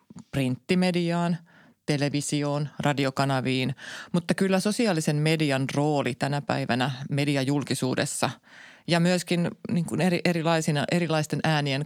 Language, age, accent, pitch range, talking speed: Finnish, 30-49, native, 135-170 Hz, 95 wpm